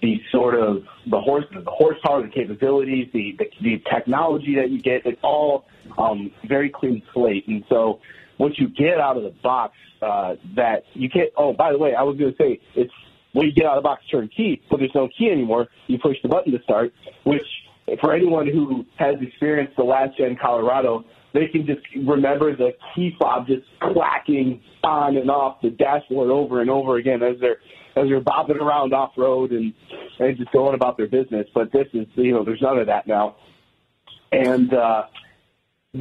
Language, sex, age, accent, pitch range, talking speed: English, male, 30-49, American, 120-145 Hz, 205 wpm